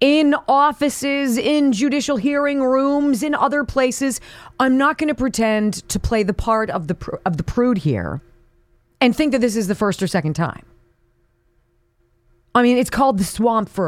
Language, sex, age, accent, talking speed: English, female, 40-59, American, 180 wpm